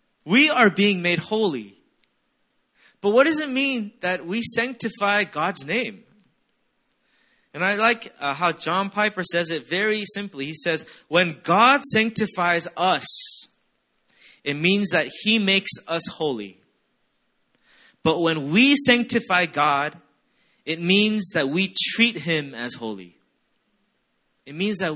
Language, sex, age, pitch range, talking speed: English, male, 20-39, 155-215 Hz, 130 wpm